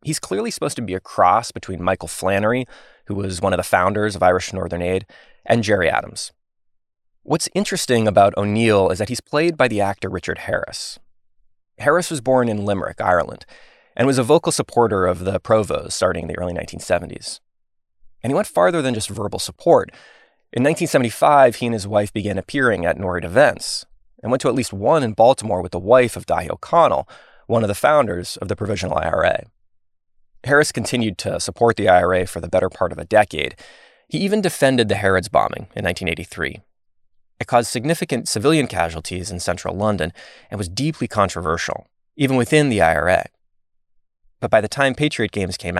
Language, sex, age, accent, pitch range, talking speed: English, male, 20-39, American, 90-120 Hz, 185 wpm